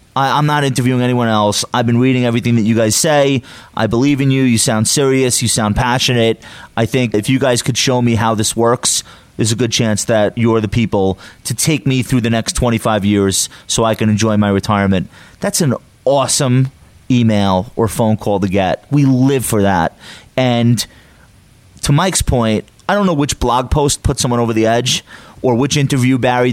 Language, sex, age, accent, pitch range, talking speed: English, male, 30-49, American, 110-135 Hz, 200 wpm